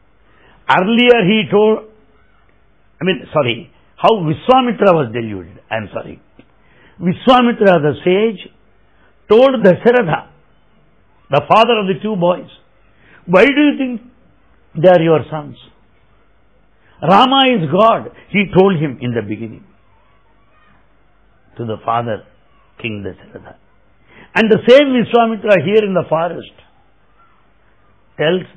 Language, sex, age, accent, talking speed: English, male, 60-79, Indian, 115 wpm